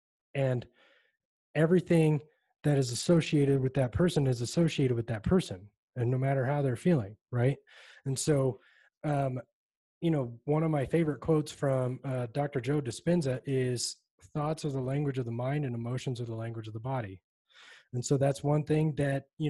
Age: 20-39